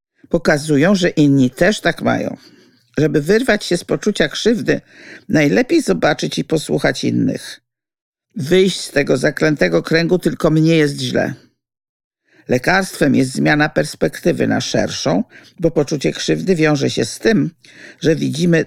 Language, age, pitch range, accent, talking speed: Polish, 50-69, 140-215 Hz, native, 130 wpm